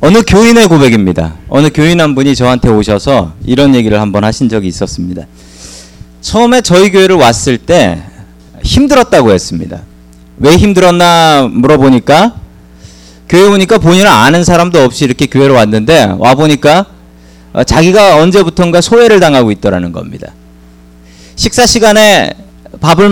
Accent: native